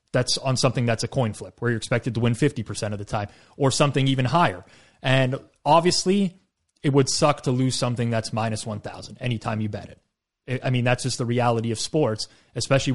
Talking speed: 205 wpm